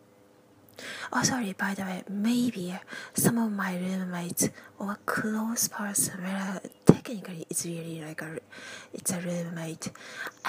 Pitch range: 175-220 Hz